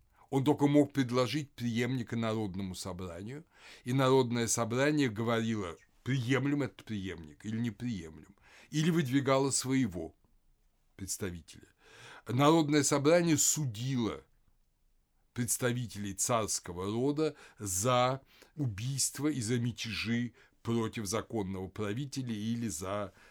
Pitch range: 95-130 Hz